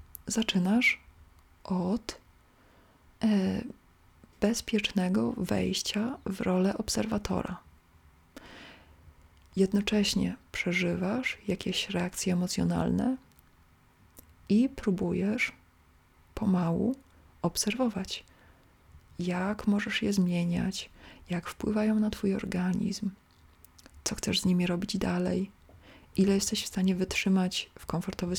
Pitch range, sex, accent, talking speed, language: 175-210 Hz, female, native, 80 wpm, Polish